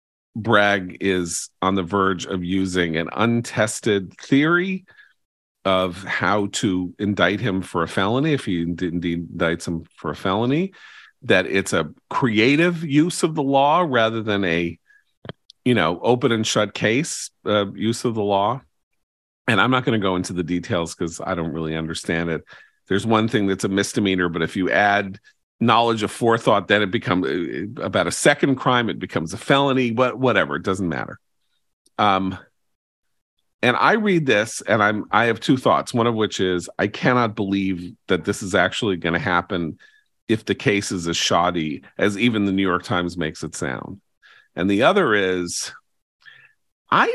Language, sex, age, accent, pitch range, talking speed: English, male, 40-59, American, 90-125 Hz, 175 wpm